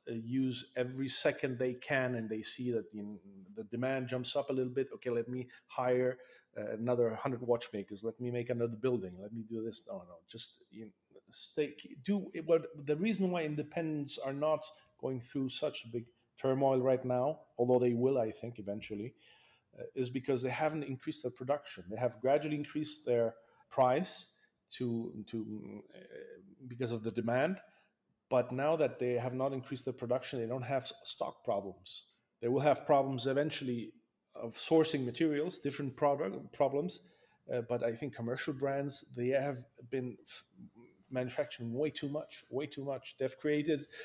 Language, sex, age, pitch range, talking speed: English, male, 40-59, 120-145 Hz, 175 wpm